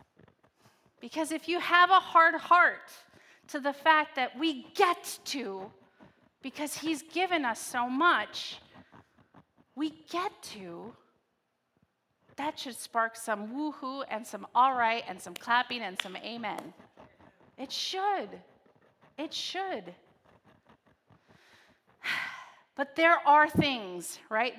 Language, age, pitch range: English, 30-49, 250-320 Hz